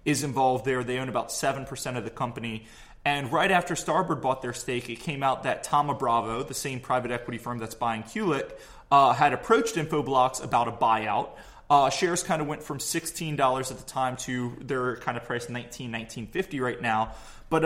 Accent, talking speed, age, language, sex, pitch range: American, 195 wpm, 20-39, English, male, 120-150 Hz